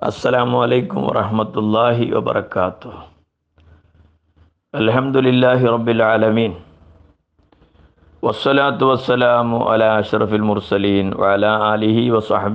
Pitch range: 95-120 Hz